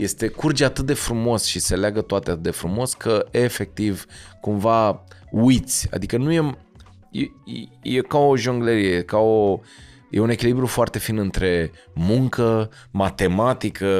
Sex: male